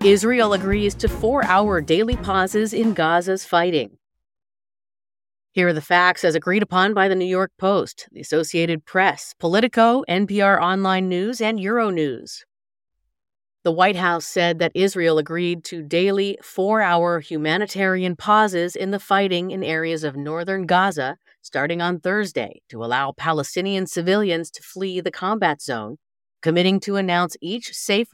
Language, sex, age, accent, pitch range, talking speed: English, female, 30-49, American, 160-195 Hz, 145 wpm